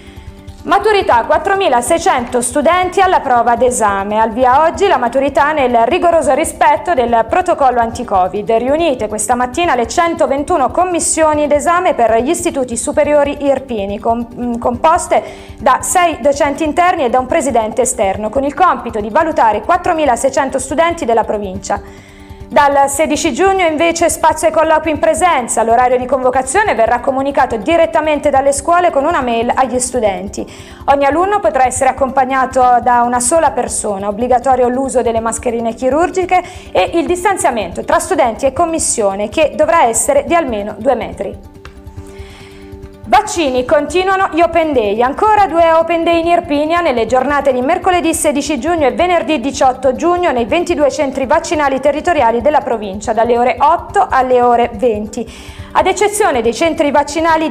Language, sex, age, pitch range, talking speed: Italian, female, 20-39, 240-330 Hz, 145 wpm